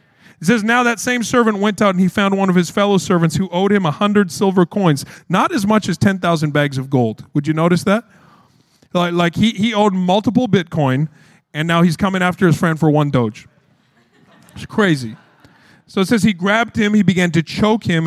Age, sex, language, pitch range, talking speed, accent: 40-59, male, English, 160-215 Hz, 215 wpm, American